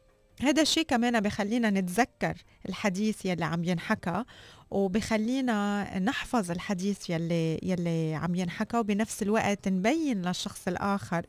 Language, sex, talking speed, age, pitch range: Arabic, female, 110 wpm, 20-39, 185-230 Hz